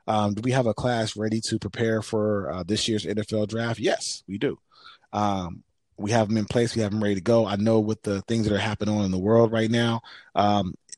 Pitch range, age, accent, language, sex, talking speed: 100-120 Hz, 30-49, American, English, male, 245 wpm